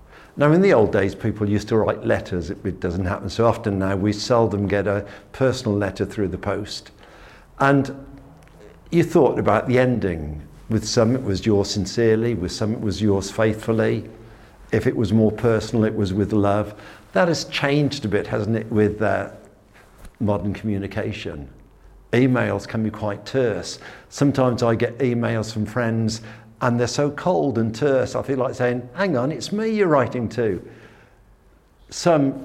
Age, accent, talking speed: 60-79, British, 170 wpm